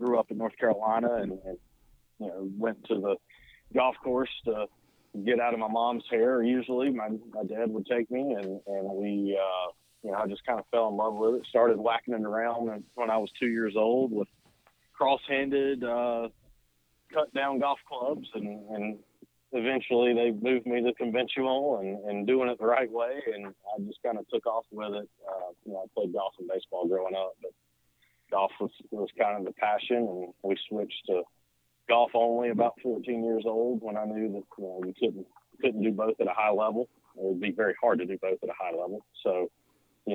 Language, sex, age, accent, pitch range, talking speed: English, male, 30-49, American, 95-120 Hz, 210 wpm